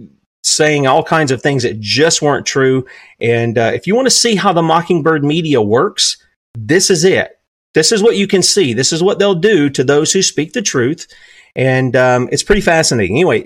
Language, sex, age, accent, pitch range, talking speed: English, male, 40-59, American, 120-170 Hz, 210 wpm